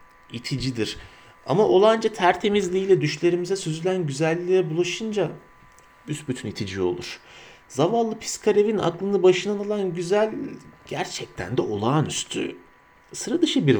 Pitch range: 115-180 Hz